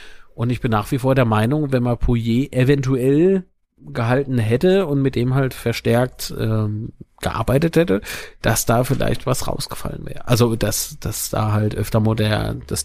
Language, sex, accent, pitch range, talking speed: German, male, German, 115-150 Hz, 165 wpm